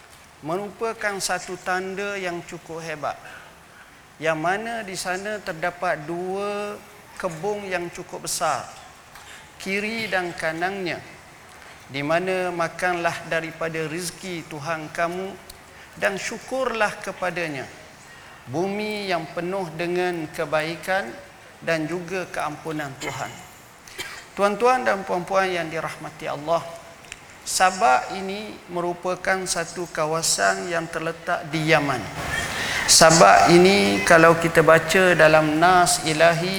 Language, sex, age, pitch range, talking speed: Malay, male, 50-69, 160-190 Hz, 100 wpm